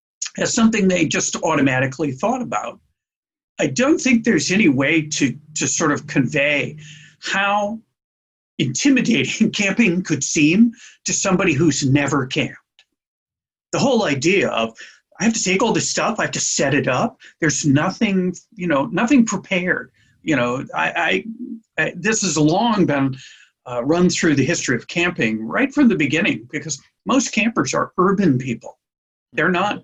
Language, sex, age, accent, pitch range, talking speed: English, male, 50-69, American, 155-235 Hz, 160 wpm